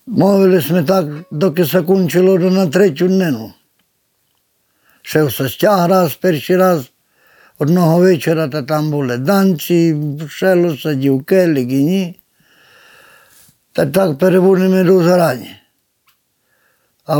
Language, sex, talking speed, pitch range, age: Ukrainian, male, 100 wpm, 155-195 Hz, 60-79